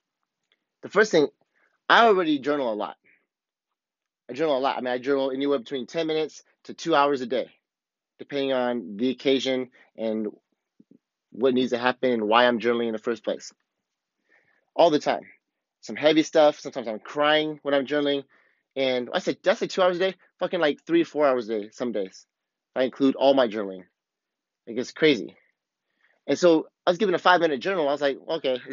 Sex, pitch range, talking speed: male, 125-155 Hz, 195 wpm